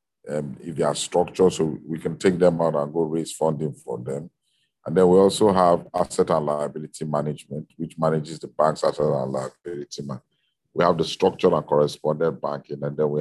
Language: English